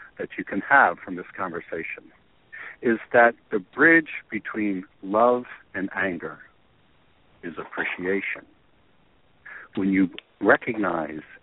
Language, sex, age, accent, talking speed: English, male, 60-79, American, 105 wpm